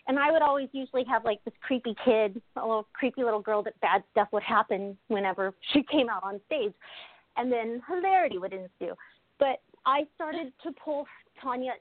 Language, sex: English, female